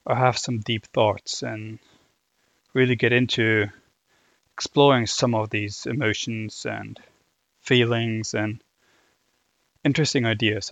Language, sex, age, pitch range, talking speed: English, male, 20-39, 115-140 Hz, 105 wpm